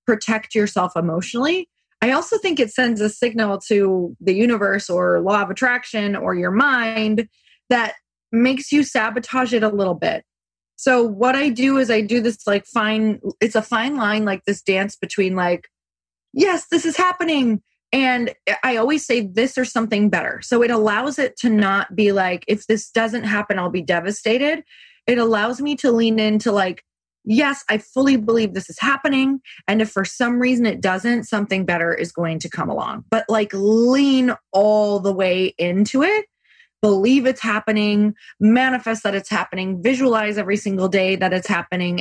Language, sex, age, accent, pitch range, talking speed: English, female, 20-39, American, 195-245 Hz, 175 wpm